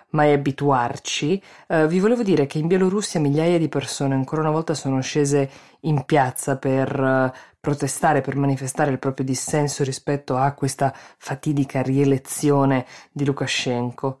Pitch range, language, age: 130-160 Hz, Italian, 20-39